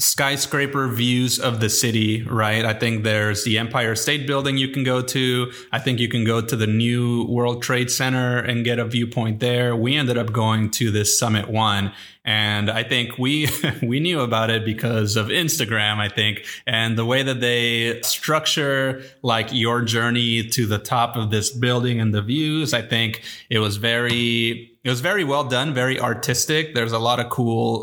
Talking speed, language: 190 wpm, English